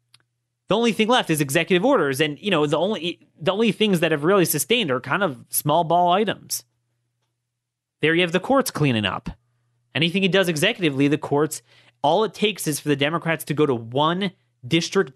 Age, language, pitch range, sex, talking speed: 30-49, English, 120-160 Hz, male, 200 wpm